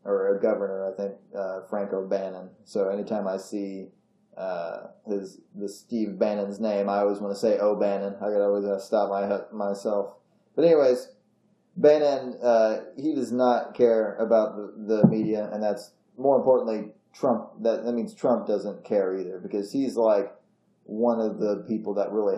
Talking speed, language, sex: 165 wpm, English, male